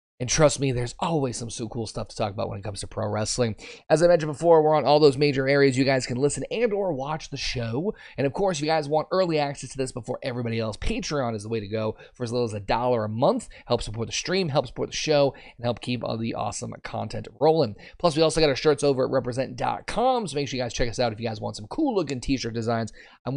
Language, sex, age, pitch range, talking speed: English, male, 30-49, 115-150 Hz, 270 wpm